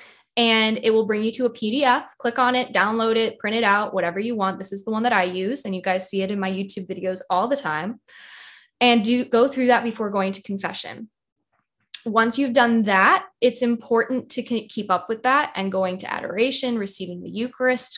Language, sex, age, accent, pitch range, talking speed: English, female, 10-29, American, 195-240 Hz, 215 wpm